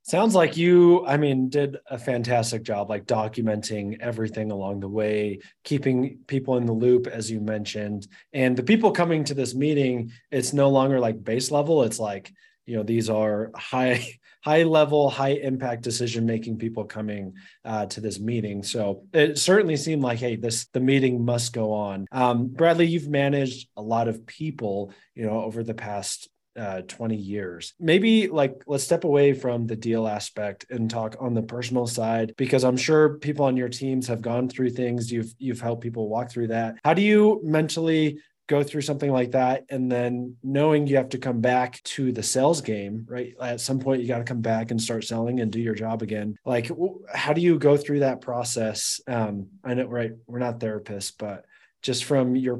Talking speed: 195 wpm